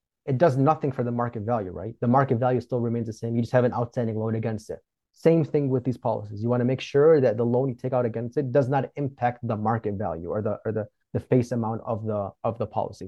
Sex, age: male, 30-49